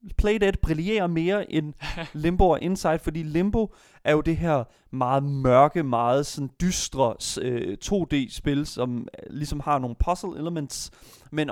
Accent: native